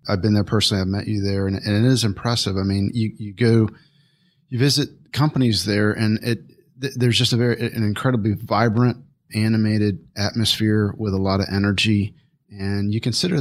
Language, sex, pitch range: English, male, 105-125 Hz